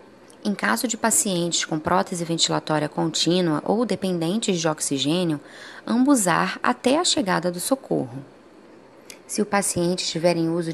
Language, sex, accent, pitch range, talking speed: Portuguese, female, Brazilian, 175-250 Hz, 135 wpm